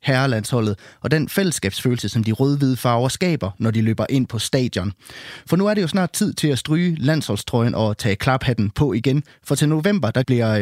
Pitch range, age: 115-145 Hz, 30-49